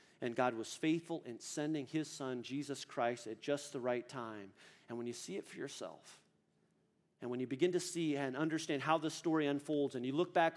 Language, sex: English, male